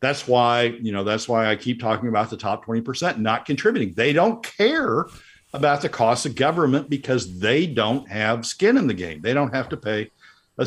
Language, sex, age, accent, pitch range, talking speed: English, male, 50-69, American, 110-140 Hz, 215 wpm